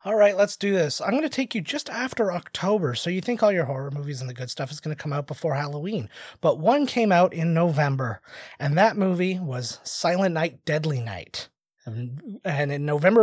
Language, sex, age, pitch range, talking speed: English, male, 30-49, 145-200 Hz, 220 wpm